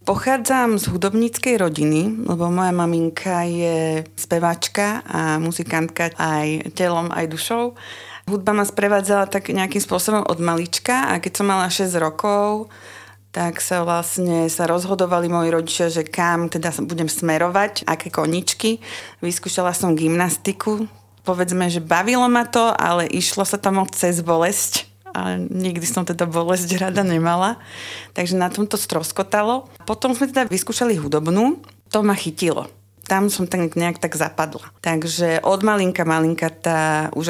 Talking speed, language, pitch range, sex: 140 wpm, Slovak, 165-195 Hz, female